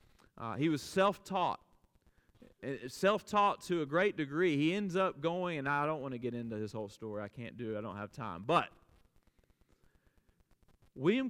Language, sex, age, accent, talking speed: English, male, 30-49, American, 175 wpm